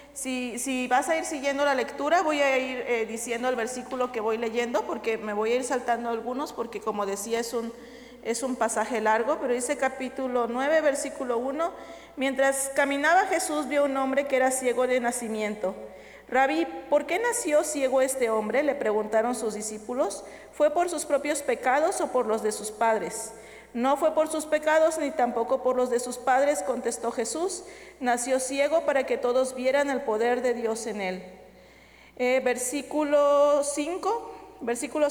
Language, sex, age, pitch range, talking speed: Spanish, female, 40-59, 230-290 Hz, 175 wpm